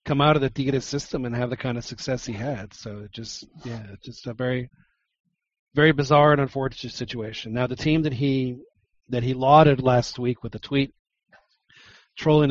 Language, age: English, 40-59